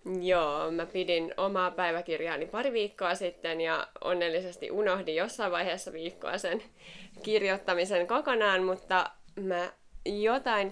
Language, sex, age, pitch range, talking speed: Finnish, female, 20-39, 170-200 Hz, 110 wpm